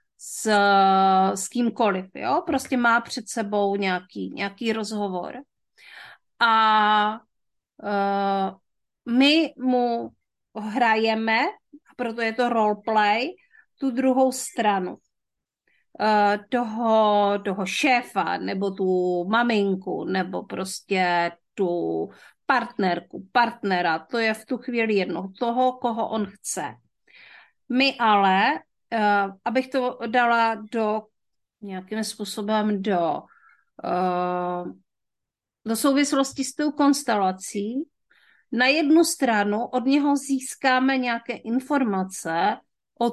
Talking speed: 95 wpm